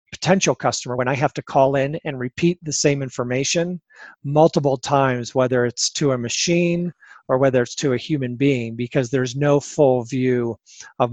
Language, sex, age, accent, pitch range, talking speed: English, male, 40-59, American, 125-150 Hz, 180 wpm